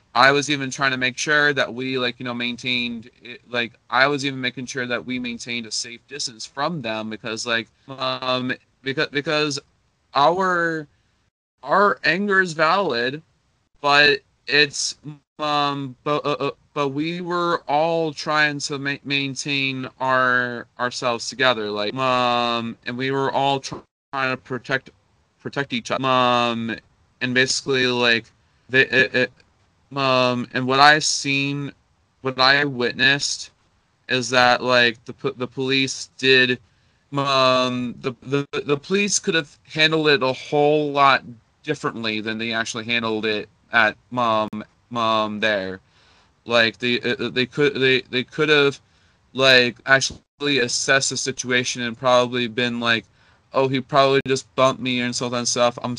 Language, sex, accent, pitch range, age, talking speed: English, male, American, 120-140 Hz, 20-39, 150 wpm